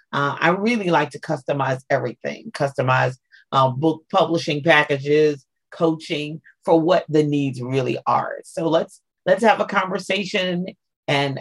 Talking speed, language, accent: 135 wpm, English, American